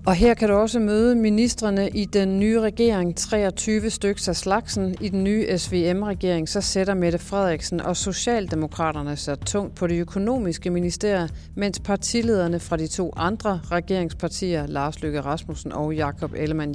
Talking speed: 160 wpm